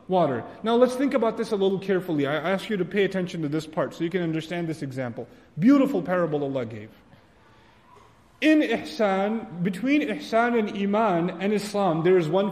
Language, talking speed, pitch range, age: English, 185 wpm, 160-230 Hz, 30-49